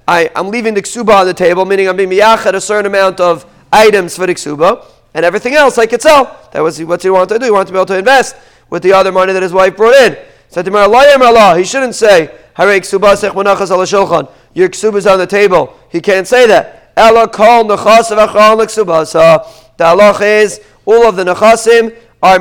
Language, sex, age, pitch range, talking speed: English, male, 30-49, 175-215 Hz, 195 wpm